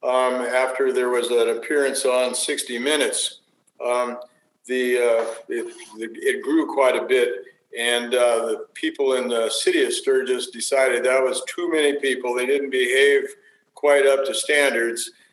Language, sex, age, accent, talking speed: English, male, 50-69, American, 155 wpm